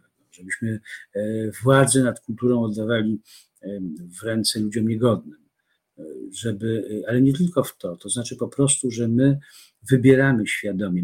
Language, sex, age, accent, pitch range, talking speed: Polish, male, 50-69, native, 105-125 Hz, 125 wpm